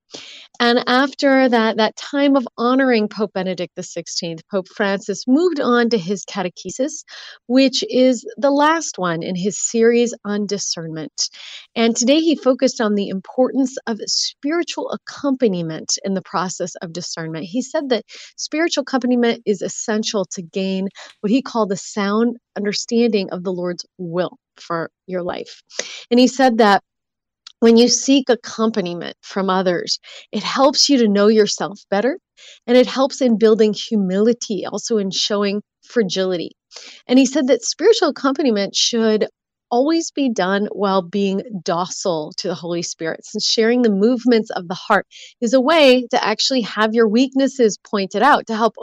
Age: 30-49